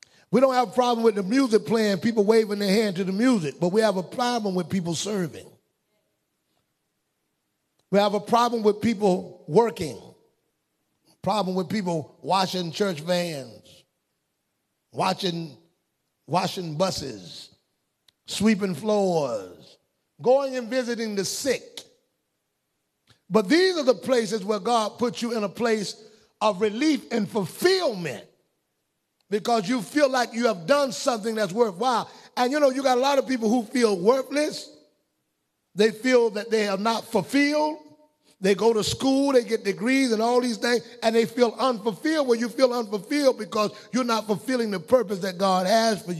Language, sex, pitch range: English, male, 200-255 Hz